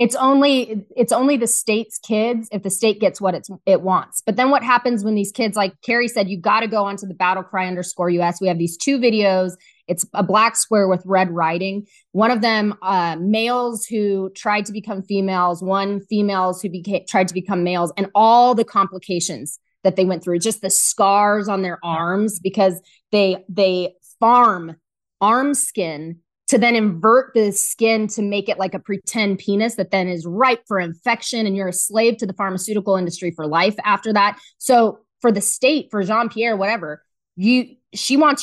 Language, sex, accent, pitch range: English, female, American, 190-240 Hz